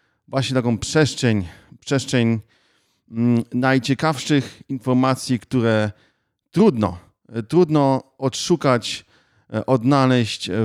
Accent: native